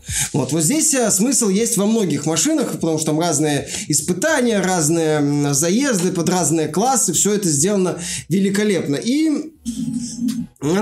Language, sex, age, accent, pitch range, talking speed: Russian, male, 20-39, native, 175-230 Hz, 135 wpm